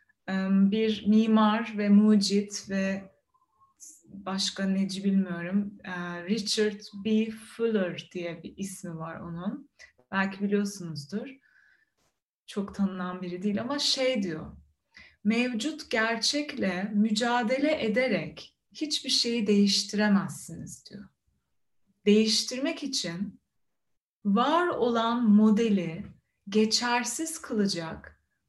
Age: 30-49